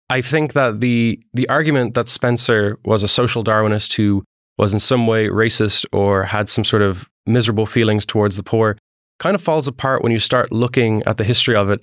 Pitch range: 105-120 Hz